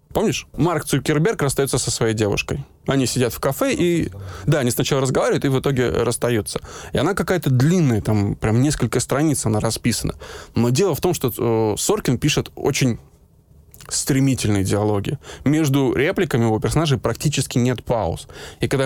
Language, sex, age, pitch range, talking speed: Russian, male, 20-39, 115-145 Hz, 155 wpm